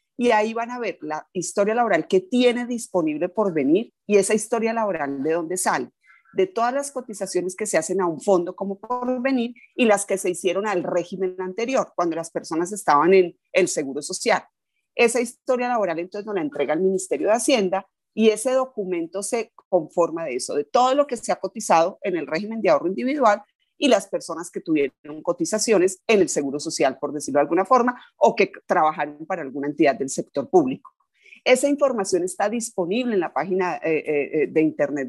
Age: 30-49